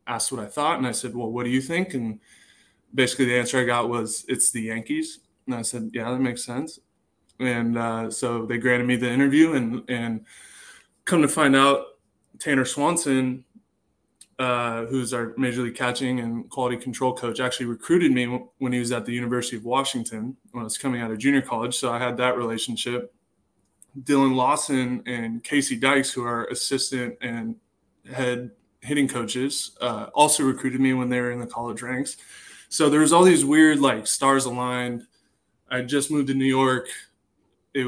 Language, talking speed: English, 185 wpm